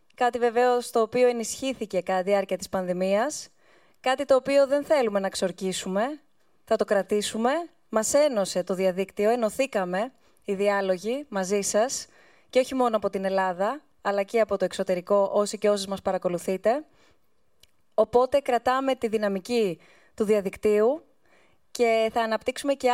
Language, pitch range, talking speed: Greek, 200-245 Hz, 145 wpm